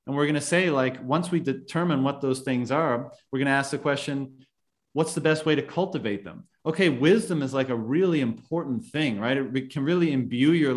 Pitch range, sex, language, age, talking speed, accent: 125-155 Hz, male, English, 30-49, 225 wpm, American